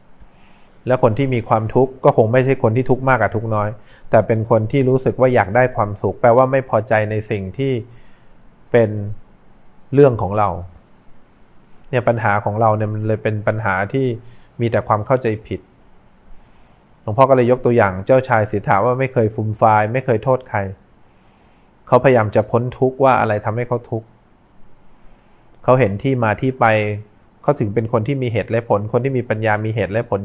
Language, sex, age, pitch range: English, male, 20-39, 105-125 Hz